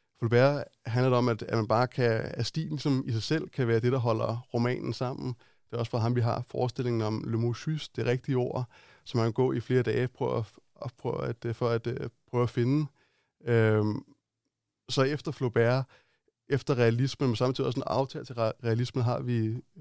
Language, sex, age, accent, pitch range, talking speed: Danish, male, 20-39, native, 115-130 Hz, 195 wpm